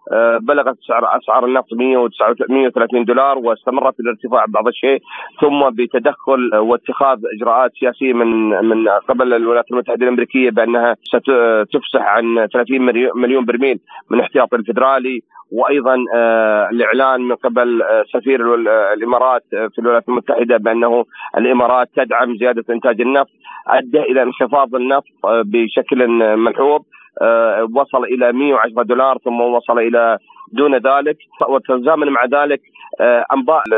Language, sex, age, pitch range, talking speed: Arabic, male, 40-59, 120-140 Hz, 115 wpm